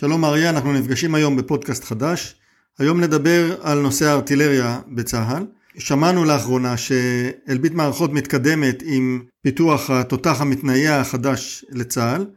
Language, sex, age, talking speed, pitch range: Hebrew, male, 50-69, 115 wpm, 130-160 Hz